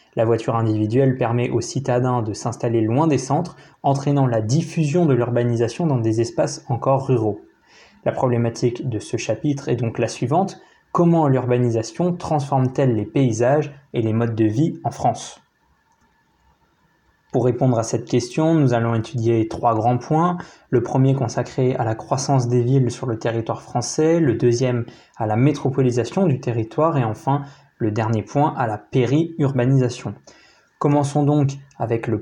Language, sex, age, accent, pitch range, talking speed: French, male, 20-39, French, 115-145 Hz, 155 wpm